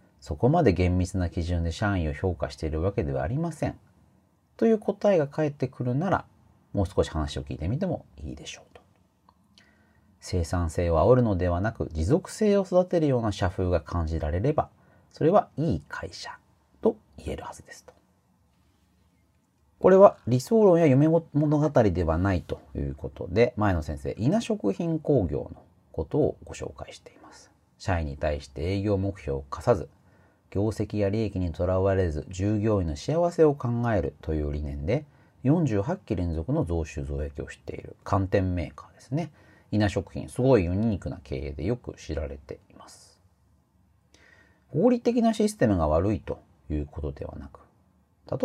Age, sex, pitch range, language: 40-59, male, 85-130 Hz, Japanese